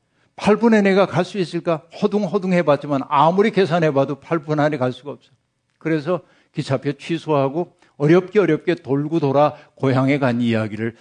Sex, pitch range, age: male, 135-175 Hz, 60-79